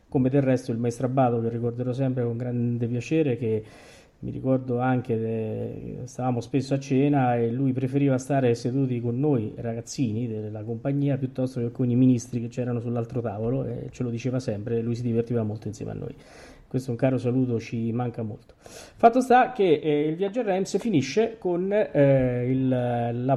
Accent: native